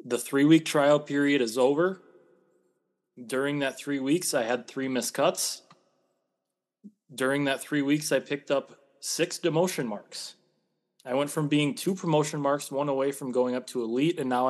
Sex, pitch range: male, 125-150 Hz